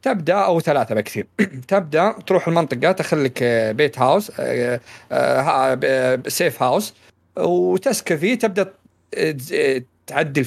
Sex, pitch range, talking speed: male, 120-160 Hz, 90 wpm